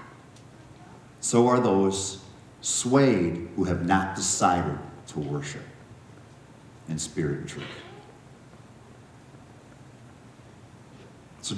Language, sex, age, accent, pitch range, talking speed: English, male, 50-69, American, 115-140 Hz, 80 wpm